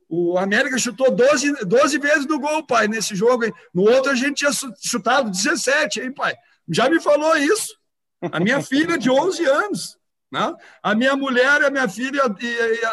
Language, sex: Portuguese, male